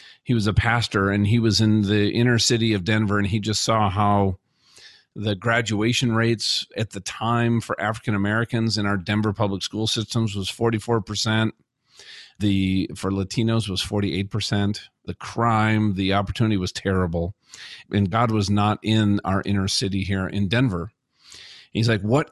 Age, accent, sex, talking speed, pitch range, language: 40-59, American, male, 160 wpm, 100-115 Hz, English